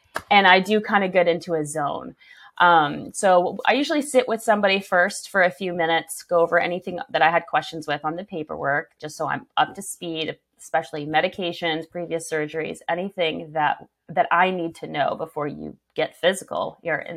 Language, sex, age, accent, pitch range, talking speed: English, female, 30-49, American, 160-210 Hz, 190 wpm